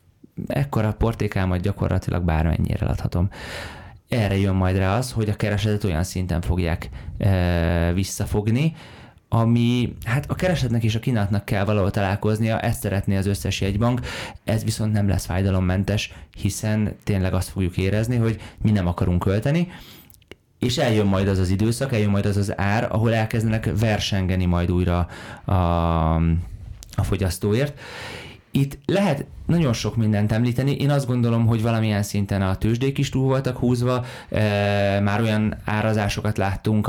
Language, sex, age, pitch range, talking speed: Hungarian, male, 20-39, 95-115 Hz, 145 wpm